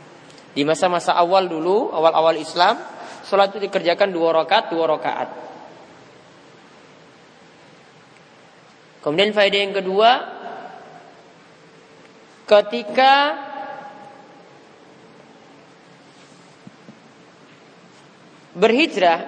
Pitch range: 175-235 Hz